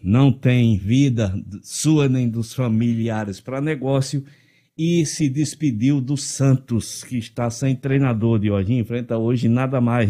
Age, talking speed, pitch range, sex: 60-79, 145 wpm, 120-150 Hz, male